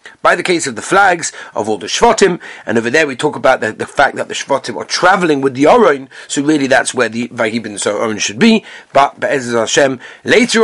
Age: 30-49